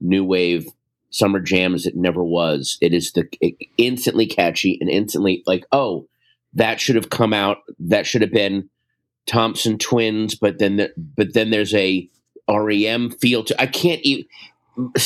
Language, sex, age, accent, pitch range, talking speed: English, male, 30-49, American, 90-115 Hz, 165 wpm